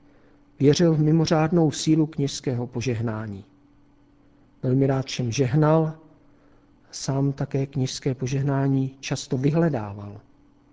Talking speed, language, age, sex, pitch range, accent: 90 wpm, Czech, 50-69, male, 130-155 Hz, native